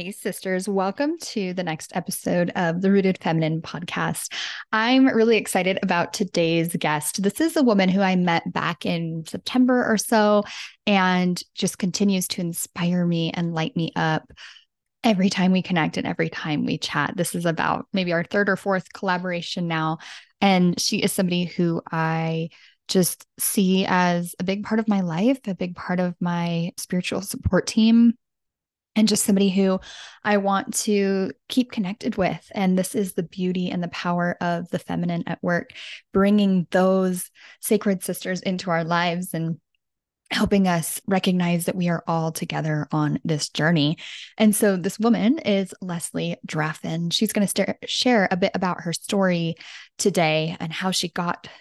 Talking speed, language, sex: 170 wpm, English, female